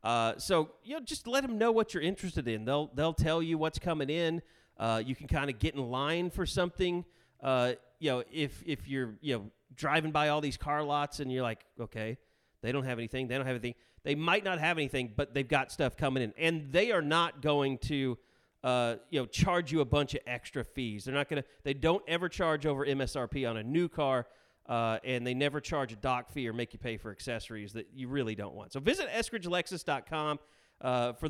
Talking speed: 230 wpm